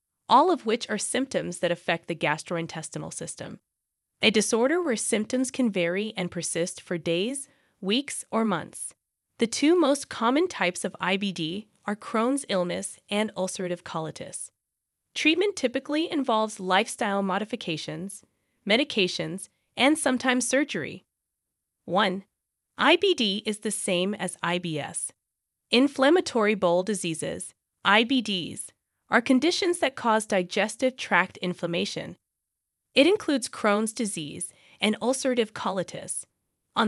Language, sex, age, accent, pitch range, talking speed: English, female, 20-39, American, 185-260 Hz, 115 wpm